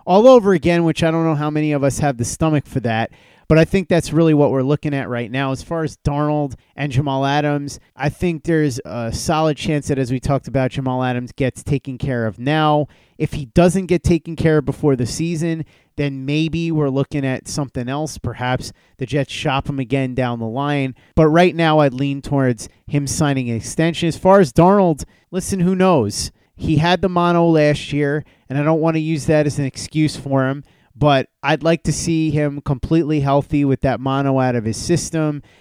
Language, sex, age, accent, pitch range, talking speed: English, male, 30-49, American, 130-160 Hz, 215 wpm